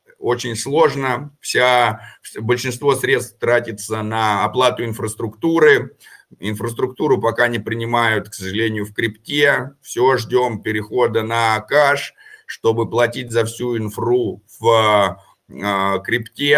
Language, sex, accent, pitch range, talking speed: Russian, male, native, 105-135 Hz, 100 wpm